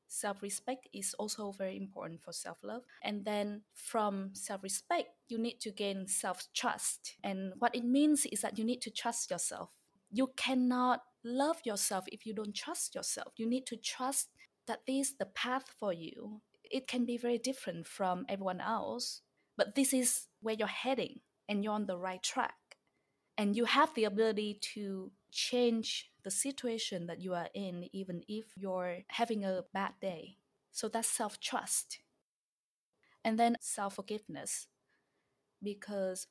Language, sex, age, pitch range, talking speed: English, female, 20-39, 195-240 Hz, 155 wpm